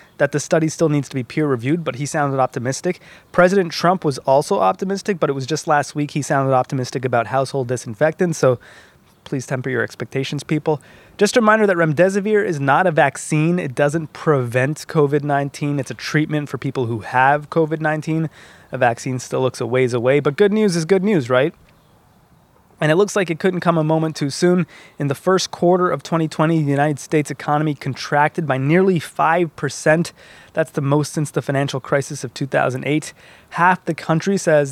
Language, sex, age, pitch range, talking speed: English, male, 20-39, 135-165 Hz, 185 wpm